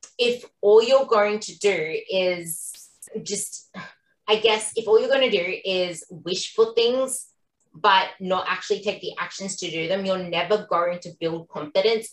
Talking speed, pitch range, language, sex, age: 175 wpm, 175-230 Hz, English, female, 20-39